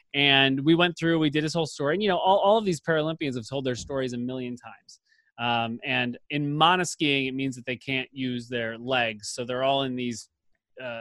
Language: English